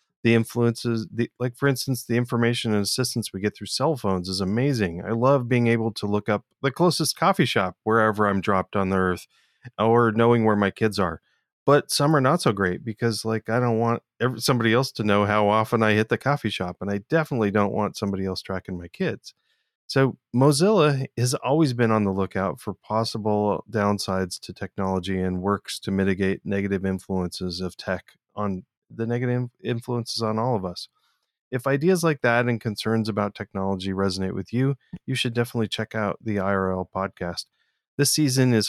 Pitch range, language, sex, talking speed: 100-125 Hz, English, male, 190 wpm